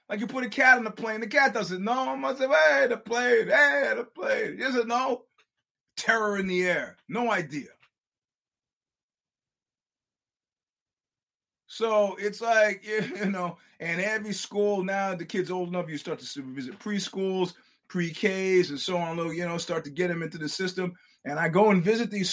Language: English